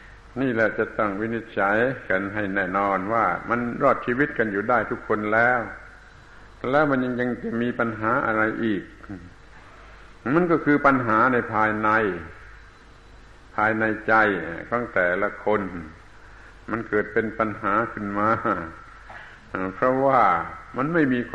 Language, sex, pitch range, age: Thai, male, 105-125 Hz, 60-79